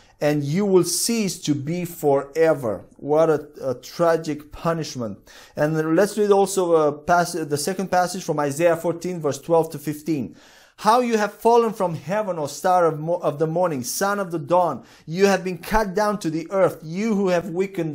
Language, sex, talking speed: English, male, 180 wpm